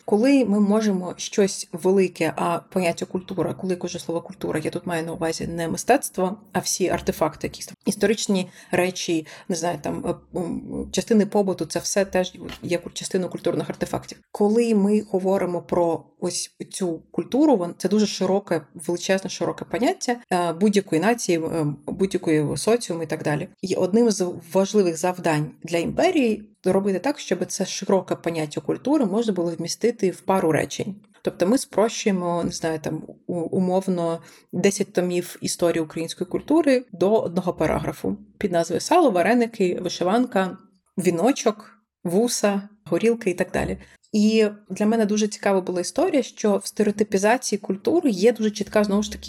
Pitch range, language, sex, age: 175-215 Hz, Ukrainian, female, 30-49